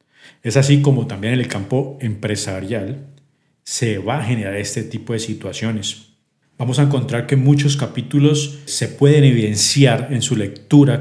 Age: 40-59